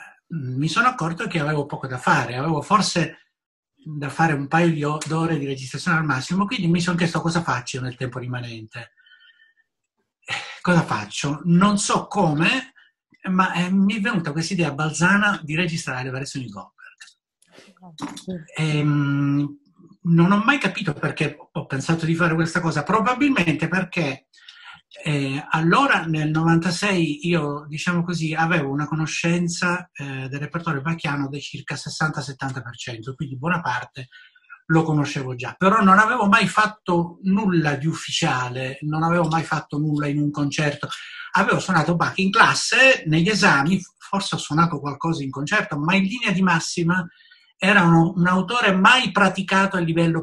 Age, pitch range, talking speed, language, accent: 60-79, 145-190 Hz, 150 wpm, Italian, native